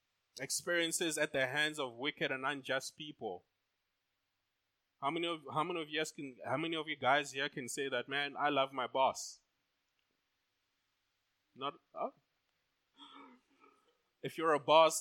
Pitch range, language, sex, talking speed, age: 115-150 Hz, English, male, 150 wpm, 20-39